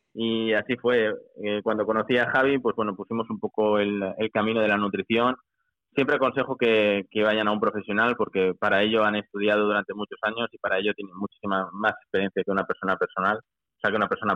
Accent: Spanish